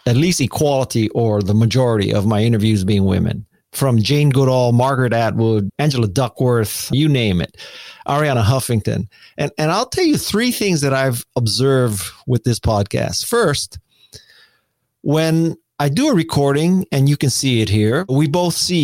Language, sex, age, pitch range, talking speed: English, male, 40-59, 115-160 Hz, 160 wpm